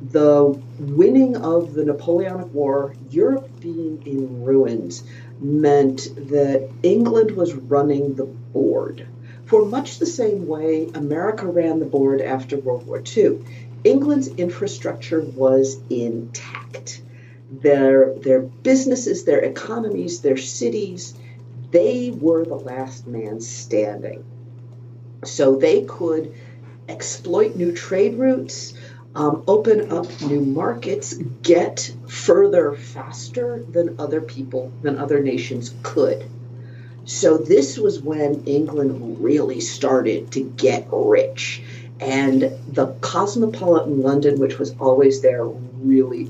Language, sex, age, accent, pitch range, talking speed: English, female, 50-69, American, 120-155 Hz, 115 wpm